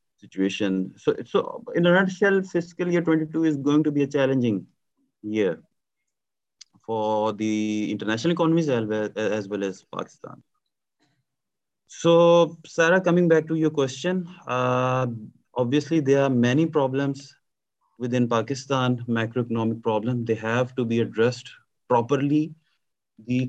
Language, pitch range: Urdu, 115-155 Hz